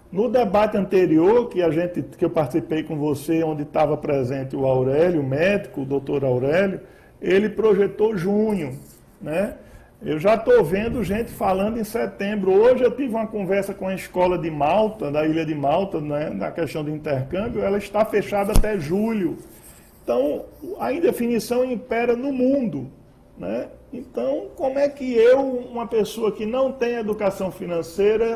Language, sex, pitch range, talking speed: Portuguese, male, 170-215 Hz, 160 wpm